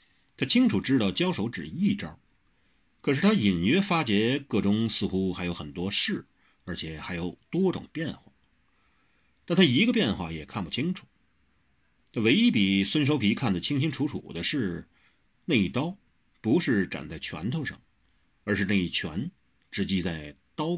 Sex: male